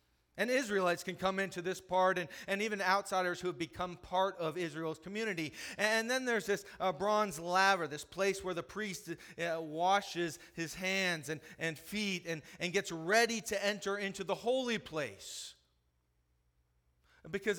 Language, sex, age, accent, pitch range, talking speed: English, male, 30-49, American, 140-195 Hz, 165 wpm